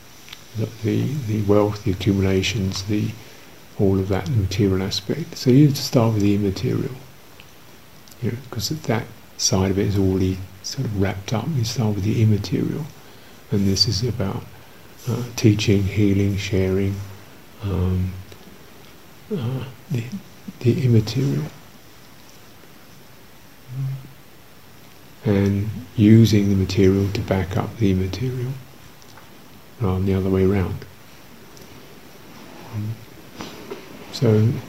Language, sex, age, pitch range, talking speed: English, male, 50-69, 100-120 Hz, 110 wpm